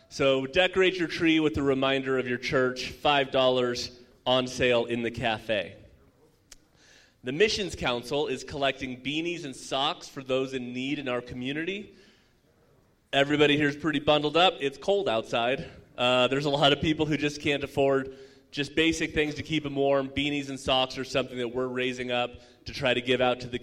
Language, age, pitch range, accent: English, 30-49, 125-150 Hz, American